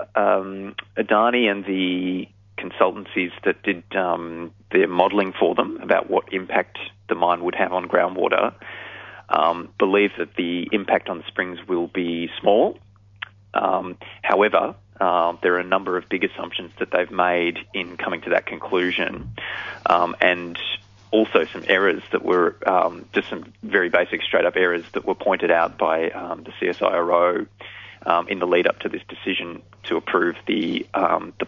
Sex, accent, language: male, Australian, English